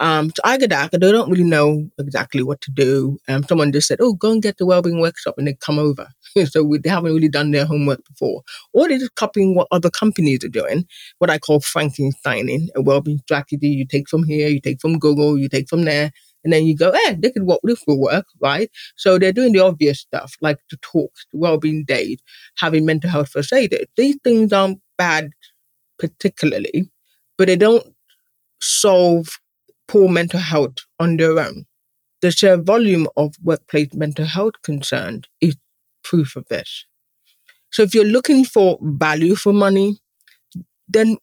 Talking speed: 190 wpm